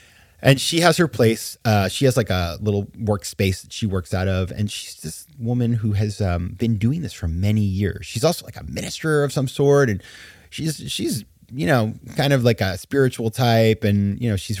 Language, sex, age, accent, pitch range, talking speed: English, male, 30-49, American, 95-125 Hz, 220 wpm